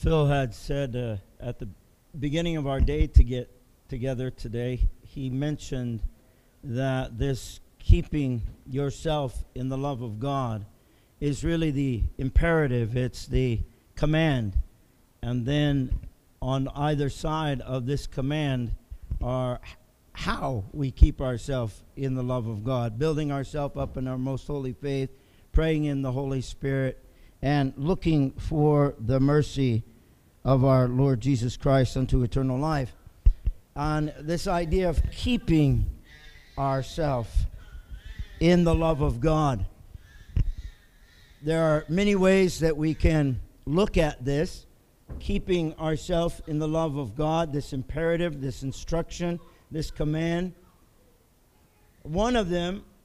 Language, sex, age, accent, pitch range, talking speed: English, male, 50-69, American, 120-155 Hz, 130 wpm